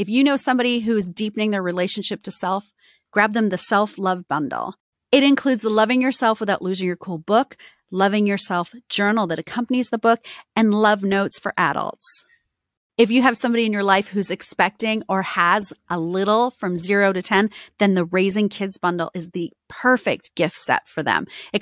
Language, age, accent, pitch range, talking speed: English, 30-49, American, 185-235 Hz, 190 wpm